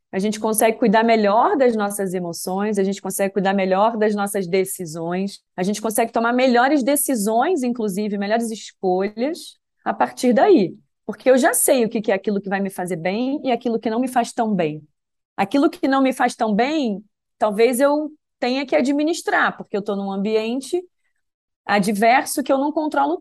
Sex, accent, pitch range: female, Brazilian, 200-275 Hz